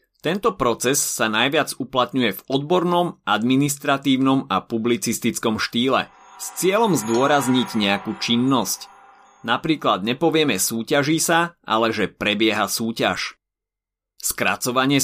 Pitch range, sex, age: 110-150 Hz, male, 30-49